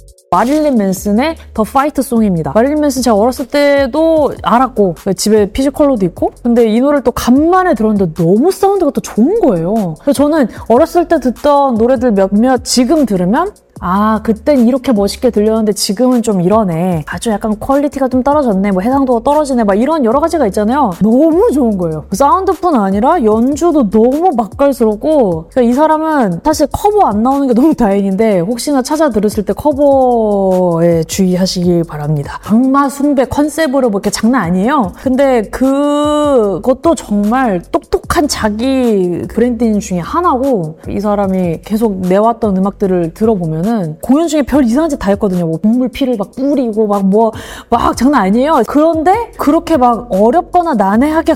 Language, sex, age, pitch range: Korean, female, 20-39, 195-280 Hz